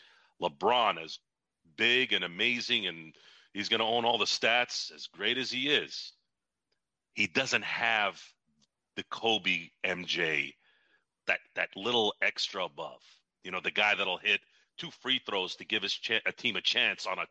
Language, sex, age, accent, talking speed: English, male, 40-59, American, 165 wpm